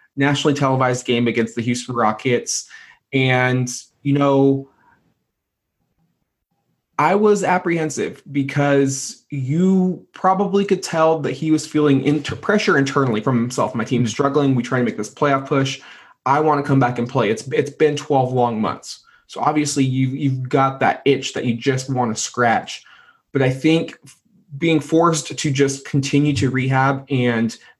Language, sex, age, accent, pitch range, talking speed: English, male, 20-39, American, 125-150 Hz, 160 wpm